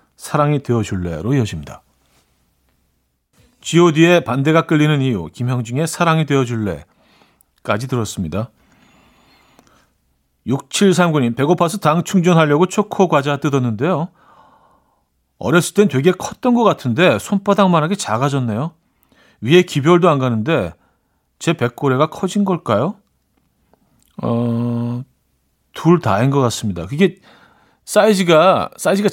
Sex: male